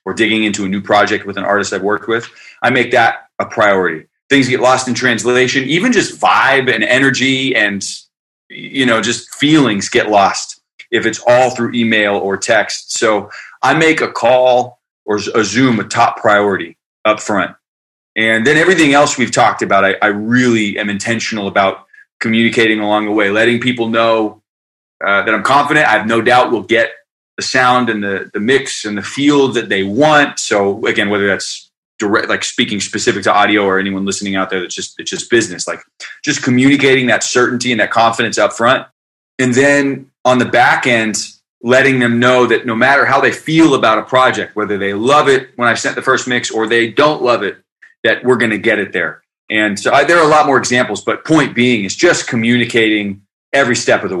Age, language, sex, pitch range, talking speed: 30-49, English, male, 105-125 Hz, 205 wpm